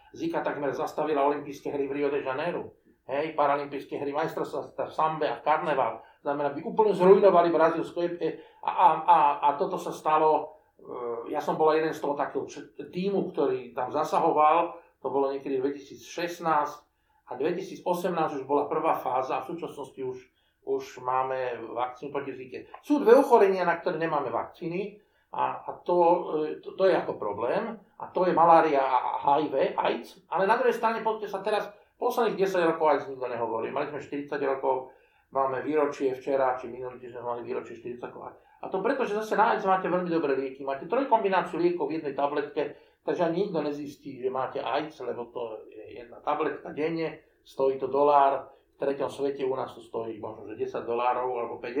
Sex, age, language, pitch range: male, 50-69, Slovak, 140-205 Hz